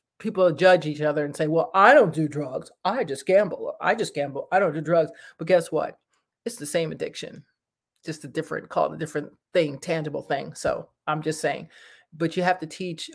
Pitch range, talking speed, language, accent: 150-180 Hz, 215 wpm, English, American